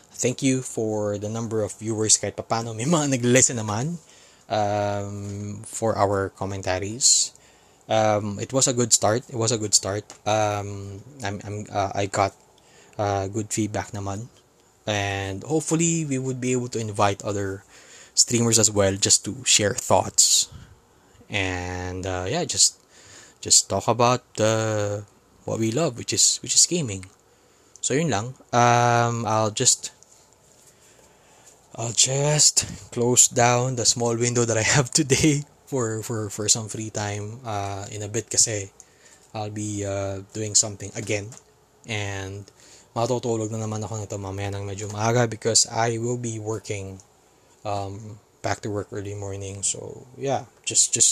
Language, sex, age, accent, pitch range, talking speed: Filipino, male, 20-39, native, 100-120 Hz, 155 wpm